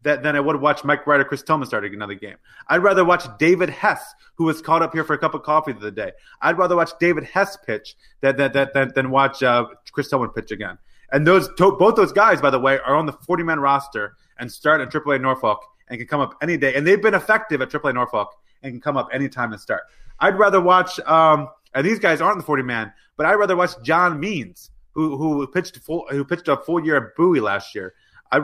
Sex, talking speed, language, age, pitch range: male, 245 wpm, English, 30-49, 135-180 Hz